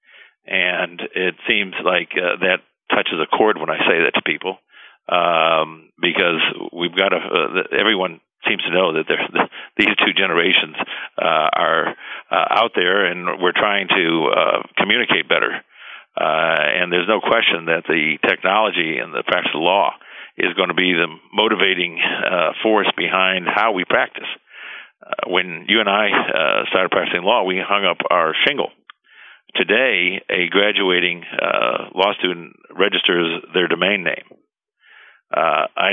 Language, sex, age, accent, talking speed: English, male, 50-69, American, 155 wpm